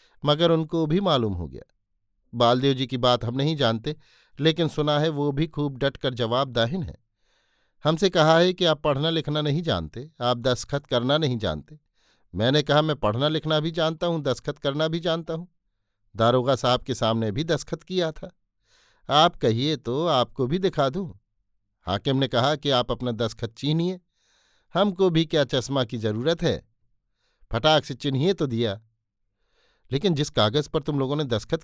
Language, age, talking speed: Hindi, 50-69, 175 wpm